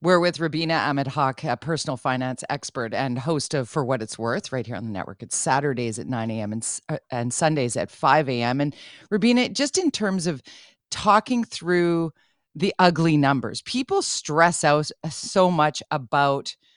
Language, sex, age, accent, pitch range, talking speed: English, female, 40-59, American, 140-180 Hz, 180 wpm